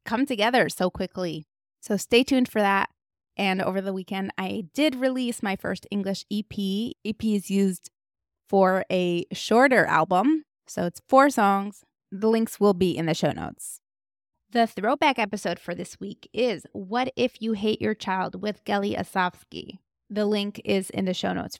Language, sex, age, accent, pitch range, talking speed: English, female, 20-39, American, 185-220 Hz, 170 wpm